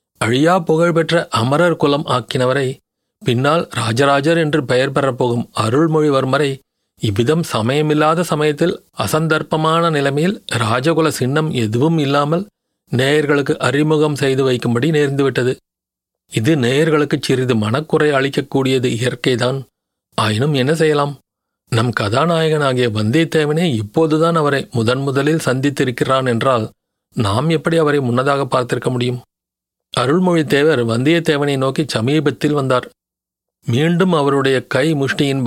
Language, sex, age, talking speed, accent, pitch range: Tamil, male, 40-59, 100 wpm, native, 125-155 Hz